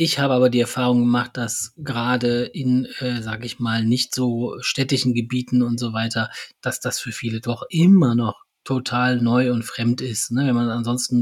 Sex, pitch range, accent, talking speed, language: male, 120-140 Hz, German, 185 wpm, German